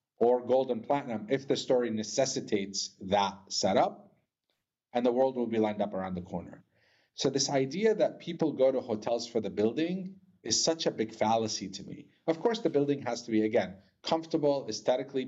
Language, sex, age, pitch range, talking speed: English, male, 40-59, 105-140 Hz, 190 wpm